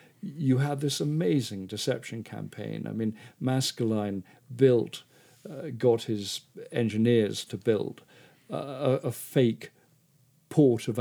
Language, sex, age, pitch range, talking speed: English, male, 50-69, 110-135 Hz, 120 wpm